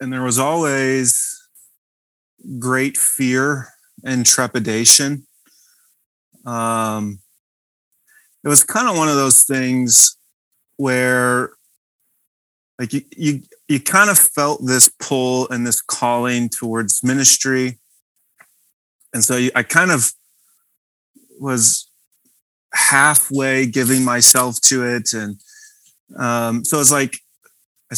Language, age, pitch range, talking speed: English, 30-49, 115-135 Hz, 105 wpm